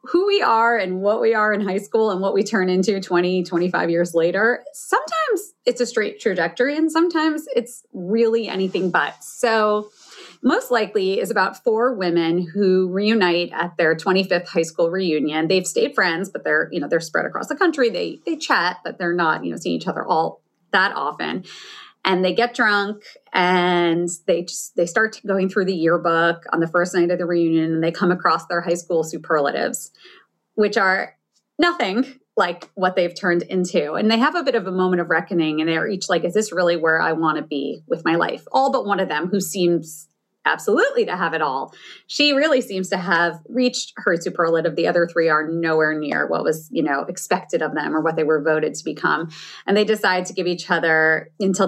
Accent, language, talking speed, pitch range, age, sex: American, English, 210 wpm, 170-225 Hz, 30-49, female